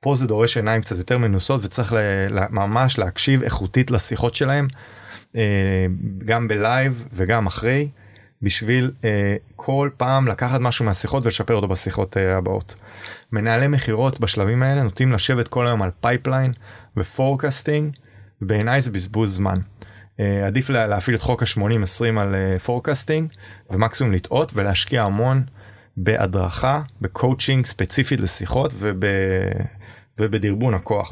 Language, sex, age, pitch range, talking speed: Hebrew, male, 30-49, 100-125 Hz, 115 wpm